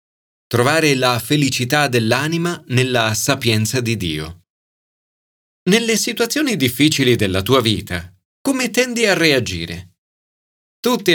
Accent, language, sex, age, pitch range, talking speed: native, Italian, male, 30-49, 105-165 Hz, 100 wpm